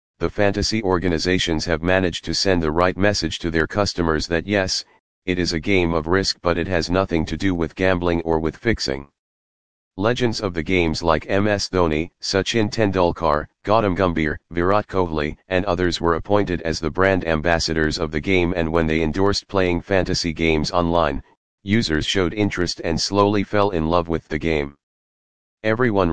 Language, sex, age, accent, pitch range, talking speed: English, male, 40-59, American, 80-95 Hz, 175 wpm